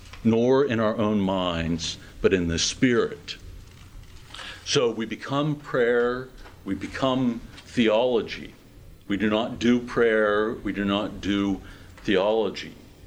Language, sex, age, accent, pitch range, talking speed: English, male, 60-79, American, 95-110 Hz, 120 wpm